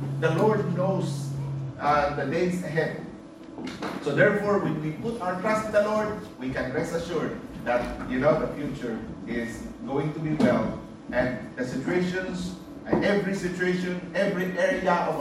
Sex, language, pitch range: male, English, 155-205 Hz